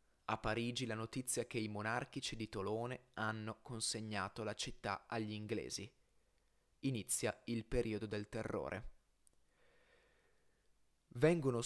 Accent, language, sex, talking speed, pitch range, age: native, Italian, male, 110 wpm, 105-130 Hz, 20-39